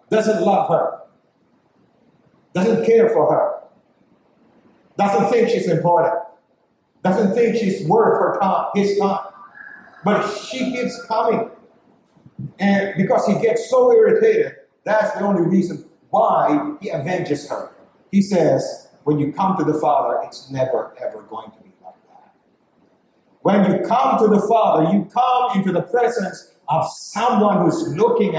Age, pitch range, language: 50-69, 165-230 Hz, English